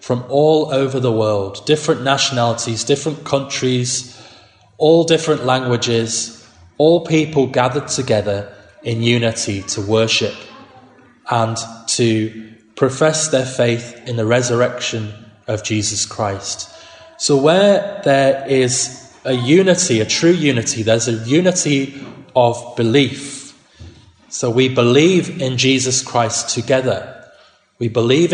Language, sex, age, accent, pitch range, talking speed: English, male, 20-39, British, 115-145 Hz, 115 wpm